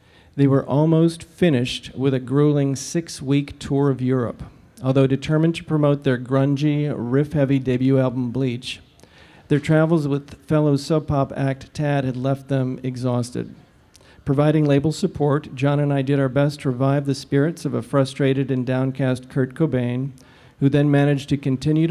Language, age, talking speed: English, 50-69, 155 wpm